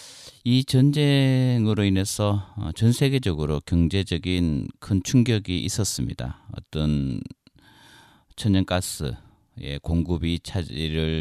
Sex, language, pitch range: male, Korean, 80-105 Hz